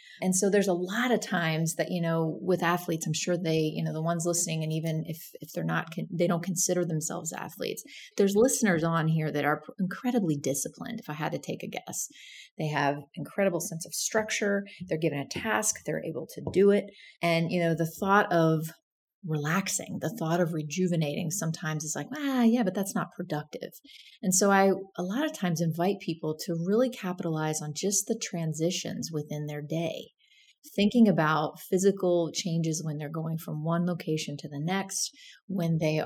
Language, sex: English, female